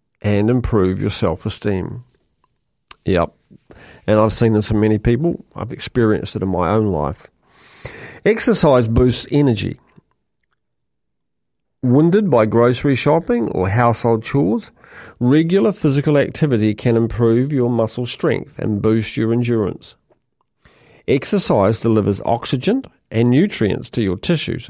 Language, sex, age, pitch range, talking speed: English, male, 40-59, 105-135 Hz, 120 wpm